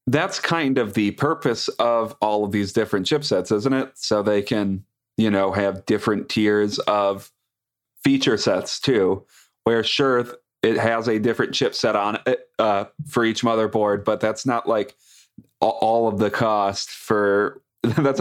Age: 30-49